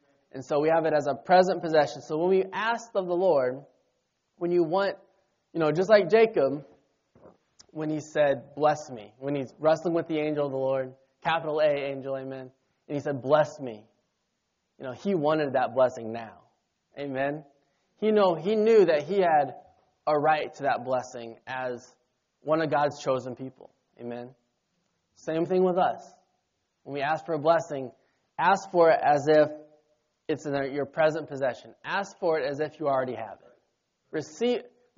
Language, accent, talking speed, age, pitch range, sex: English, American, 175 wpm, 20-39, 135-175 Hz, male